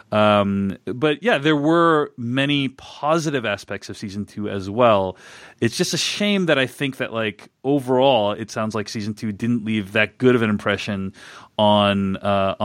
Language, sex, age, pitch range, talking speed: English, male, 30-49, 110-160 Hz, 175 wpm